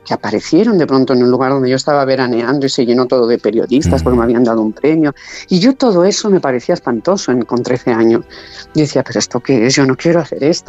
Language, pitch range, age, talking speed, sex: Spanish, 135-180 Hz, 40-59, 255 wpm, female